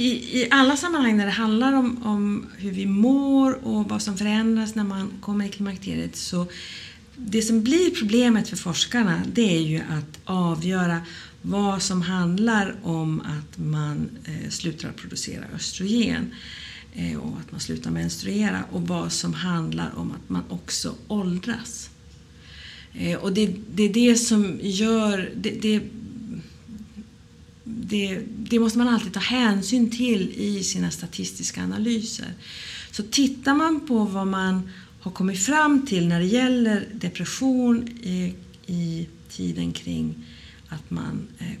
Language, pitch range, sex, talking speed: Swedish, 170-225 Hz, female, 145 wpm